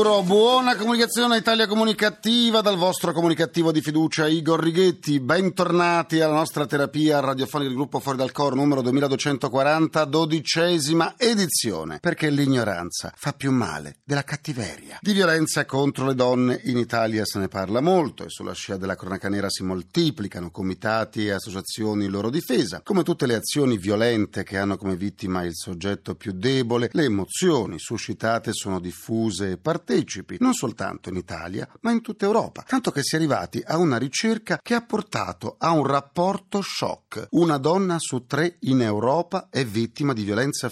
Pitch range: 110-165 Hz